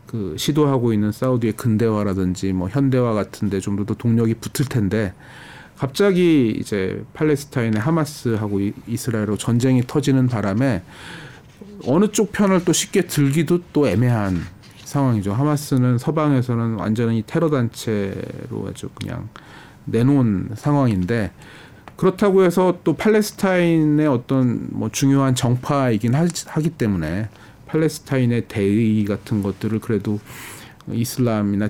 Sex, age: male, 40-59